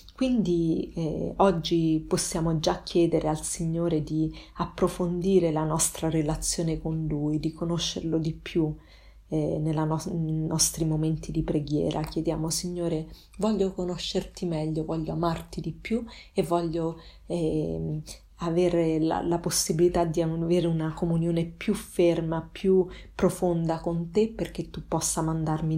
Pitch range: 160-180 Hz